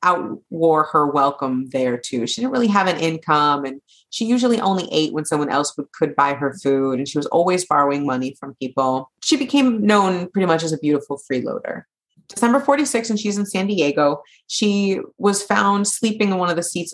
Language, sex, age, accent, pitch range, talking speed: English, female, 30-49, American, 140-205 Hz, 200 wpm